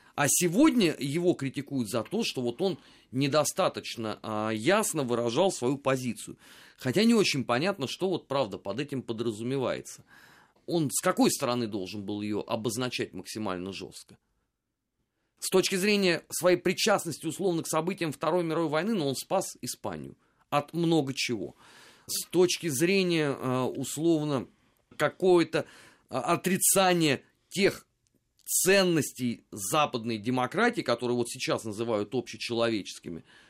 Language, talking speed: Russian, 120 wpm